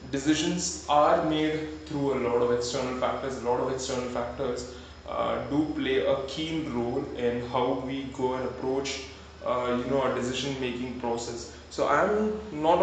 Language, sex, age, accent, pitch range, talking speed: English, male, 20-39, Indian, 130-160 Hz, 175 wpm